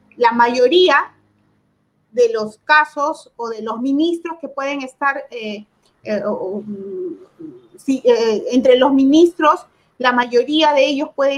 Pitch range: 250-330 Hz